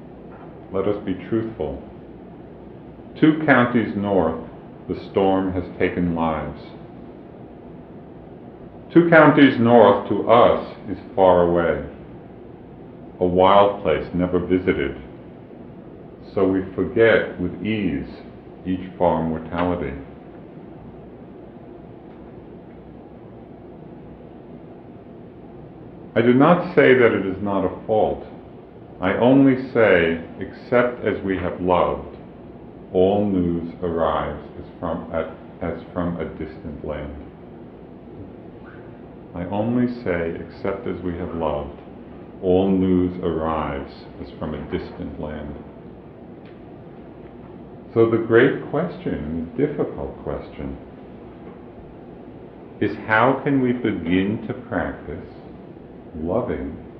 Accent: American